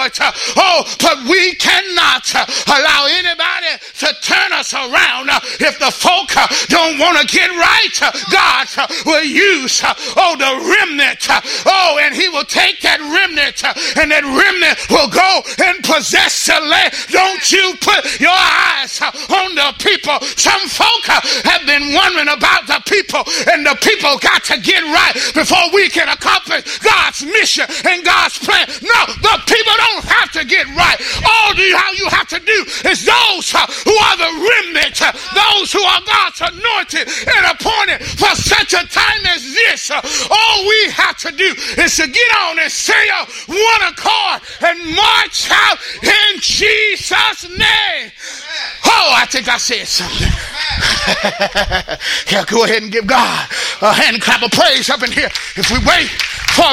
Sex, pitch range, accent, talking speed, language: male, 305-405 Hz, American, 155 wpm, English